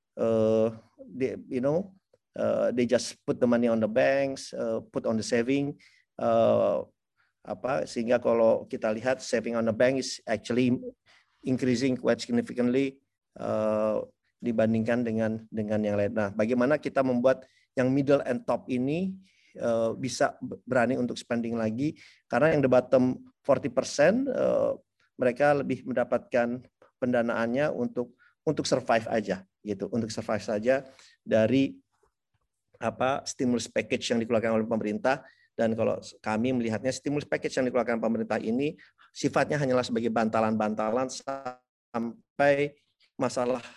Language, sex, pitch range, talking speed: Indonesian, male, 110-130 Hz, 130 wpm